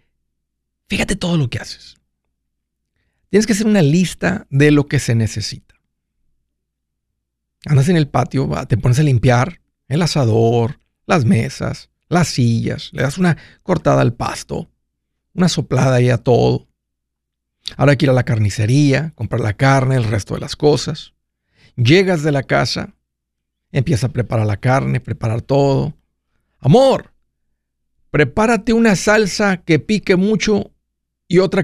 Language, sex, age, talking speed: Spanish, male, 50-69, 140 wpm